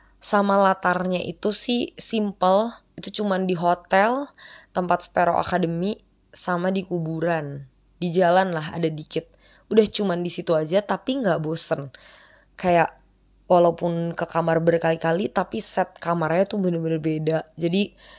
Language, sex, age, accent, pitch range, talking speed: Indonesian, female, 20-39, native, 165-185 Hz, 130 wpm